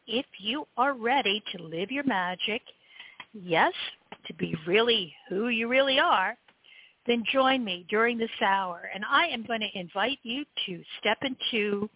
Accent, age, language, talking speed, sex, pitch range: American, 50-69, English, 160 wpm, female, 195-265 Hz